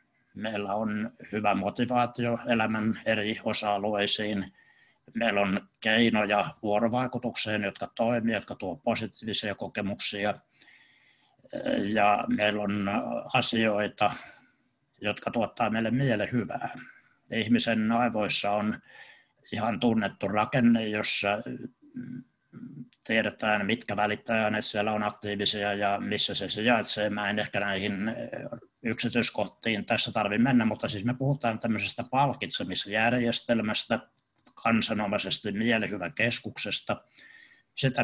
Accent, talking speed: native, 90 wpm